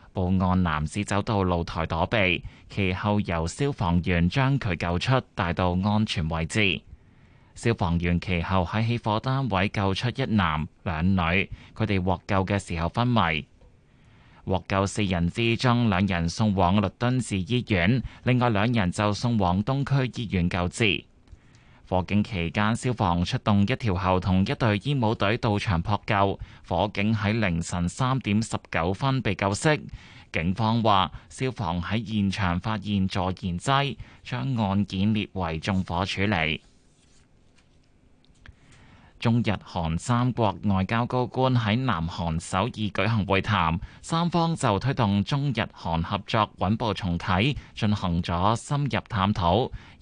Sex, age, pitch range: male, 20-39, 95-115 Hz